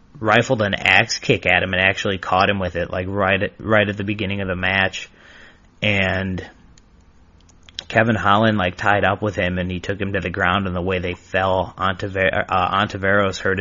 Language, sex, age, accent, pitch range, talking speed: English, male, 20-39, American, 90-100 Hz, 195 wpm